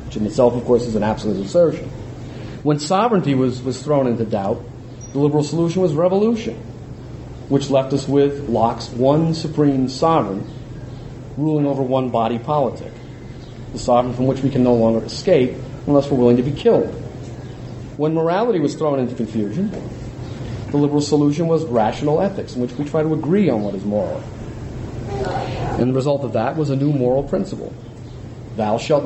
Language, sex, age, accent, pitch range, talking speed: English, male, 40-59, American, 120-150 Hz, 165 wpm